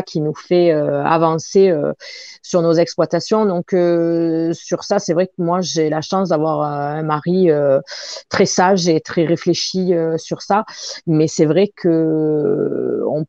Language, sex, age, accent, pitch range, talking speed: French, female, 40-59, French, 155-195 Hz, 165 wpm